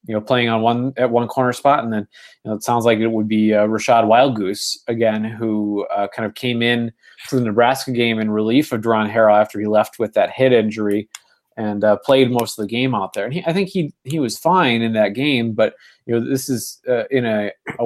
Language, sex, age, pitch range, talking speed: English, male, 20-39, 105-130 Hz, 250 wpm